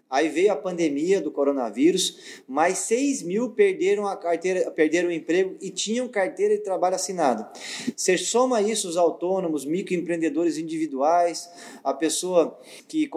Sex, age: male, 20-39